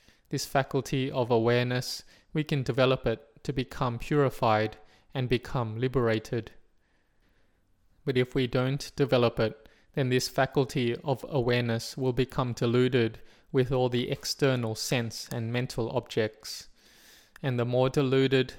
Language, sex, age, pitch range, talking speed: English, male, 20-39, 115-130 Hz, 130 wpm